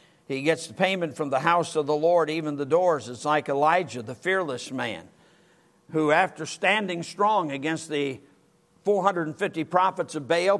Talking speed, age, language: 165 wpm, 50-69, English